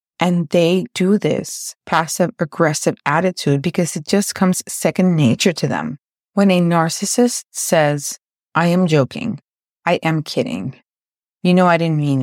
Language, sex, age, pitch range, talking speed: English, female, 30-49, 160-190 Hz, 145 wpm